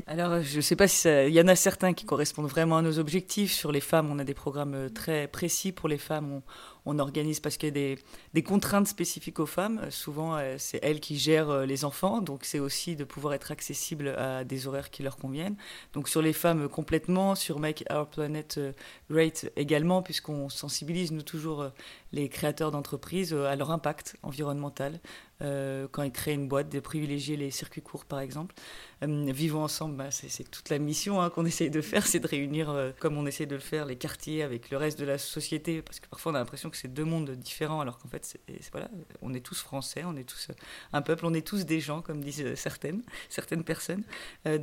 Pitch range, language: 140-170 Hz, French